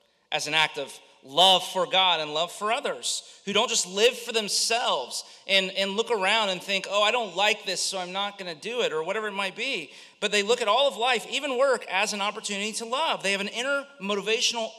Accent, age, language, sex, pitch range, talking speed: American, 40-59, English, male, 195-245 Hz, 235 wpm